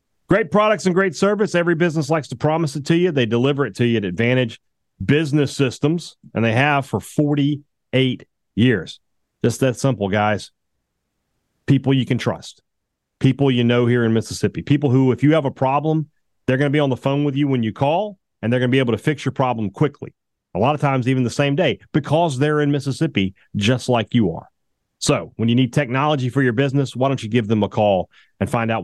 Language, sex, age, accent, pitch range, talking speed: English, male, 40-59, American, 120-150 Hz, 220 wpm